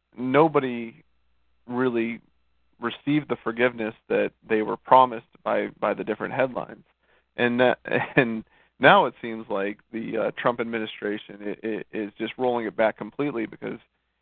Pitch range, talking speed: 105-130 Hz, 130 wpm